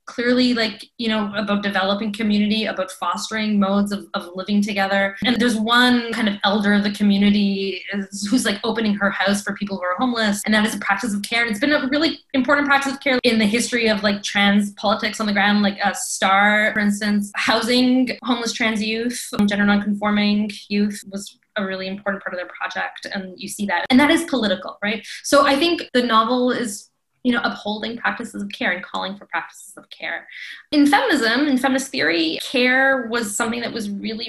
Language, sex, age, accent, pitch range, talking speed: English, female, 10-29, American, 195-235 Hz, 210 wpm